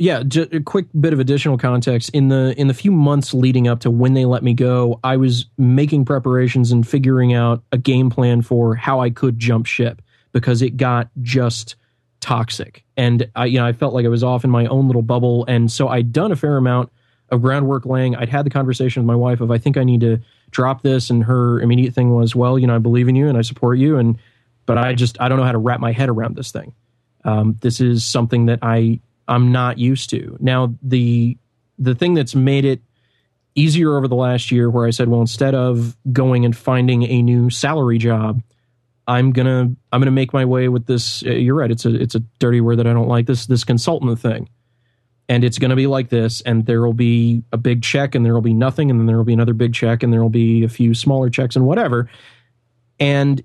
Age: 20-39